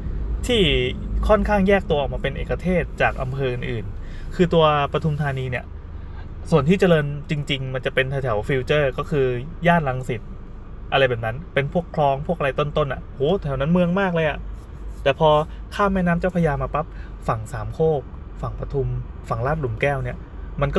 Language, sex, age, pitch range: Thai, male, 20-39, 115-155 Hz